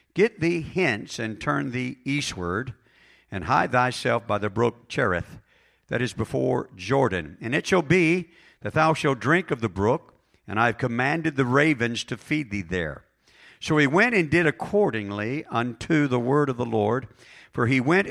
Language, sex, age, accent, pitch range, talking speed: English, male, 50-69, American, 100-130 Hz, 180 wpm